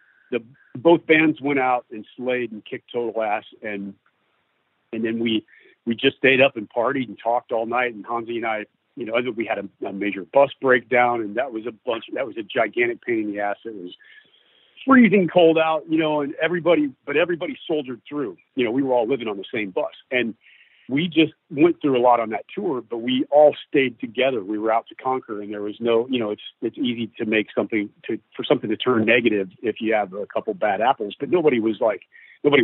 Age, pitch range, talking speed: 40-59, 115-155 Hz, 230 wpm